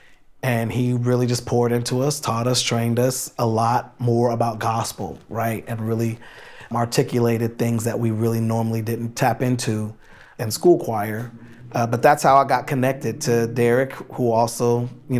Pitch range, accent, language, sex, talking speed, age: 115-145 Hz, American, English, male, 170 wpm, 30-49